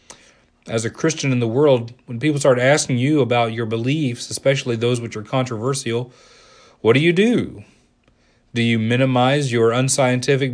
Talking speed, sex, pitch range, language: 160 wpm, male, 115-140 Hz, English